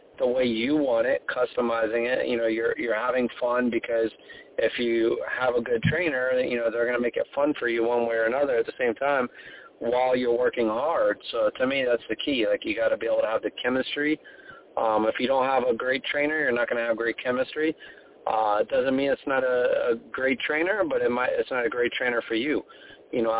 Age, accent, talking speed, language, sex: 30-49, American, 245 wpm, English, male